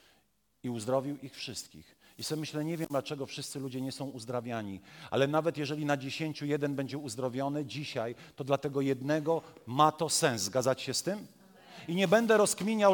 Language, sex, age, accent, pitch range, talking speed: Polish, male, 40-59, native, 160-225 Hz, 175 wpm